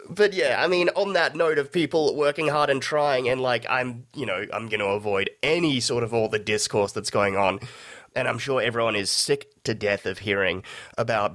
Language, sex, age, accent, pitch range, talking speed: English, male, 30-49, Australian, 105-135 Hz, 220 wpm